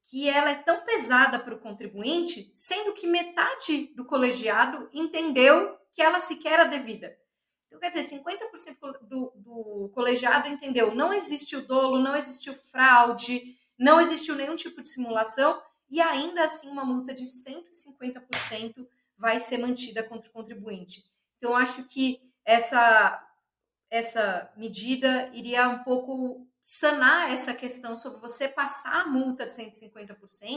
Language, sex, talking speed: Portuguese, female, 145 wpm